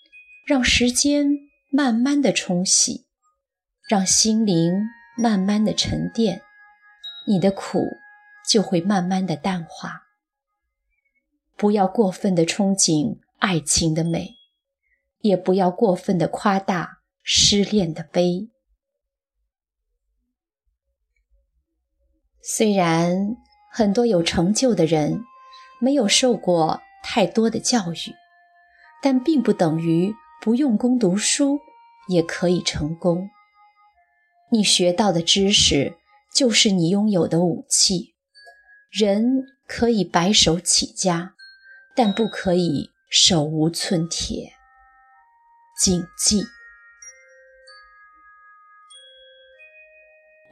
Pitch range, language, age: 185-285 Hz, Chinese, 30-49